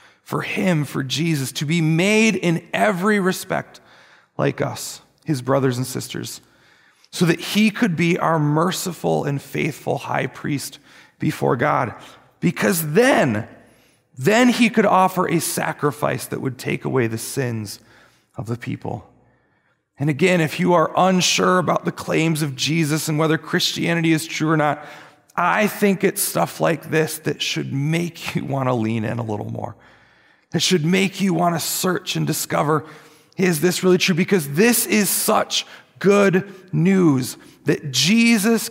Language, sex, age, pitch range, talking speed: English, male, 30-49, 140-190 Hz, 160 wpm